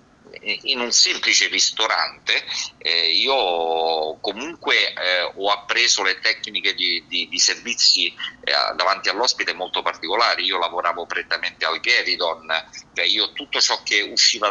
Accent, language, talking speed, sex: native, Italian, 130 wpm, male